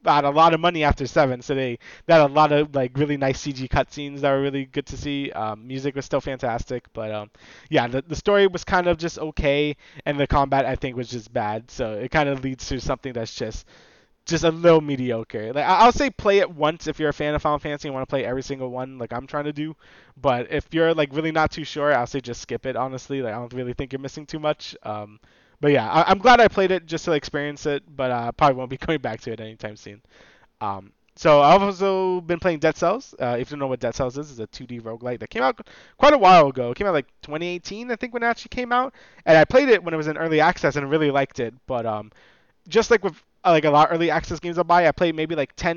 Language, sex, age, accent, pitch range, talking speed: English, male, 20-39, American, 130-170 Hz, 270 wpm